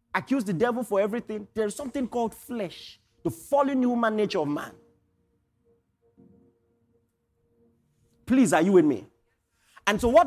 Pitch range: 190-265 Hz